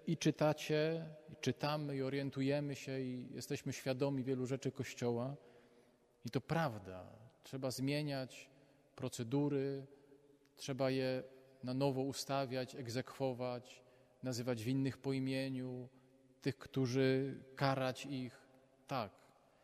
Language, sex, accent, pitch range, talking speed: Polish, male, native, 125-150 Hz, 105 wpm